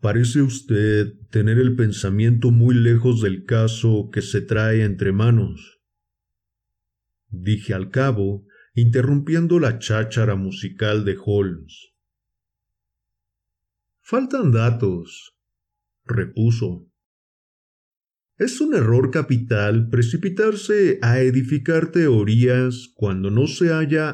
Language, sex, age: Spanish, male, 50-69